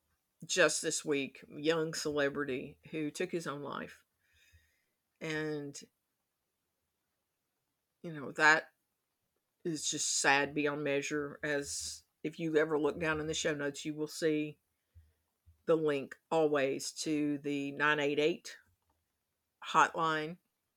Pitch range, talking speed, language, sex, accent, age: 140-170 Hz, 115 wpm, English, female, American, 50-69